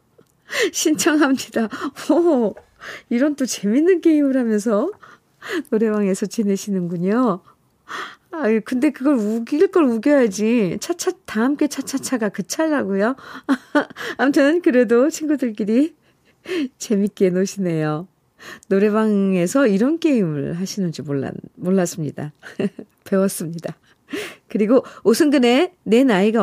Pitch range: 170-260 Hz